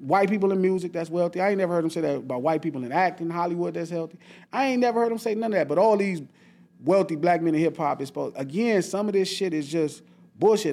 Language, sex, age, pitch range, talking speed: English, male, 30-49, 160-210 Hz, 280 wpm